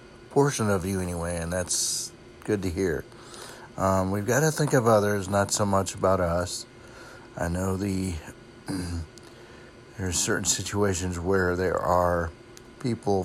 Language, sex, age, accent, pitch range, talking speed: English, male, 60-79, American, 95-120 Hz, 140 wpm